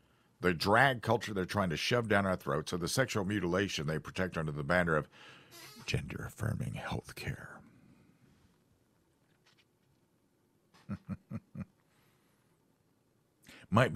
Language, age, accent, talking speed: English, 50-69, American, 105 wpm